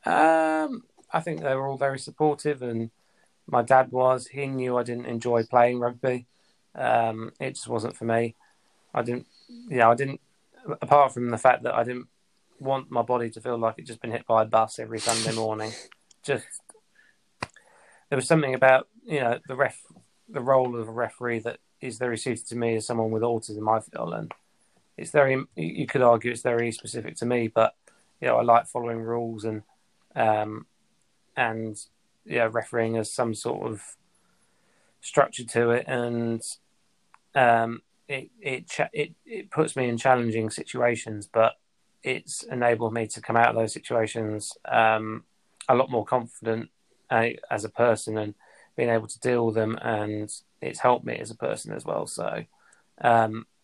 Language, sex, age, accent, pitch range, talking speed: English, male, 20-39, British, 115-125 Hz, 180 wpm